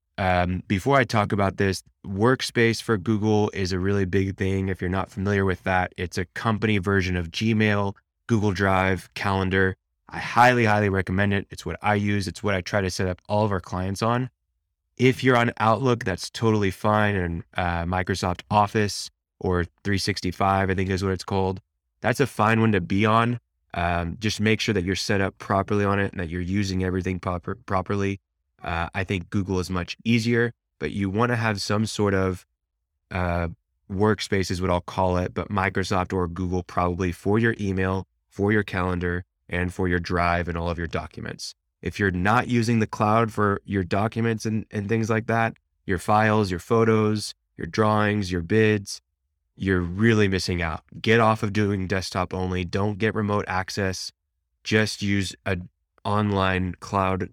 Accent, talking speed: American, 185 wpm